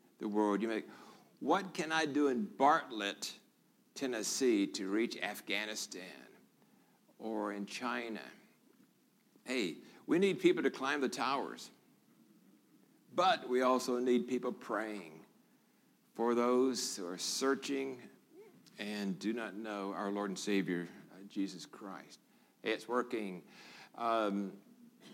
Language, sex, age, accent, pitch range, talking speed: English, male, 60-79, American, 105-145 Hz, 120 wpm